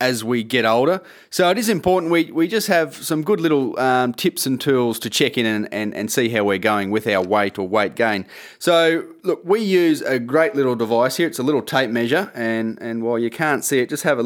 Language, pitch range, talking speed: English, 115-150 Hz, 250 wpm